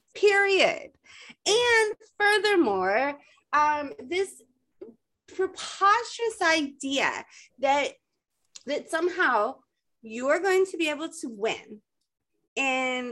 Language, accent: English, American